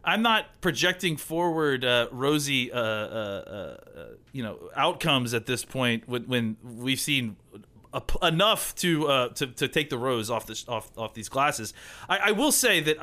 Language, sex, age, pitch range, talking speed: English, male, 30-49, 120-160 Hz, 180 wpm